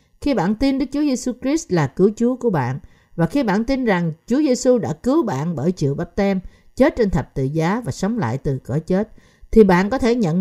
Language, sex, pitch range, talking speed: Vietnamese, female, 155-230 Hz, 240 wpm